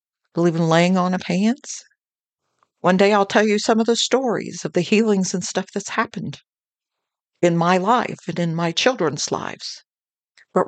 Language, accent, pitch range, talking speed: English, American, 165-210 Hz, 170 wpm